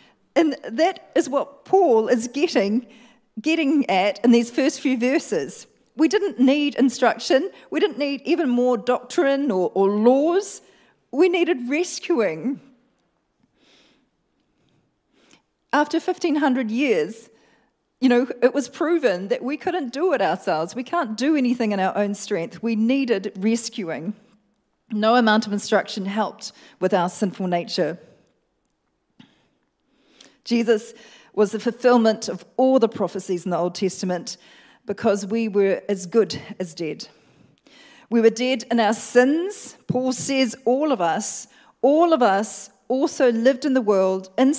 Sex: female